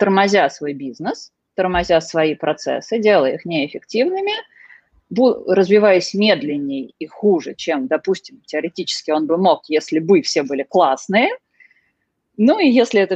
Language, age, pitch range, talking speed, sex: Russian, 30-49, 160-215 Hz, 130 wpm, female